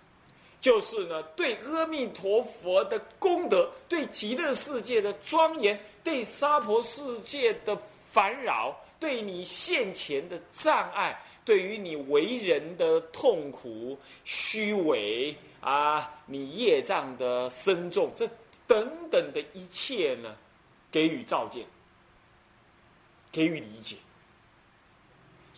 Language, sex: Chinese, male